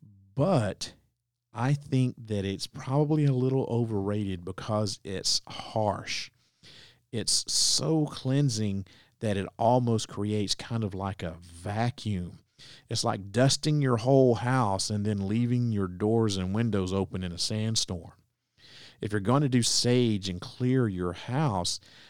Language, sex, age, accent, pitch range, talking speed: English, male, 40-59, American, 95-125 Hz, 140 wpm